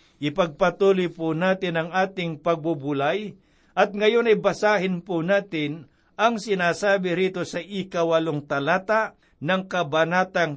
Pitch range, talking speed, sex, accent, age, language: 160-190 Hz, 115 wpm, male, native, 60-79, Filipino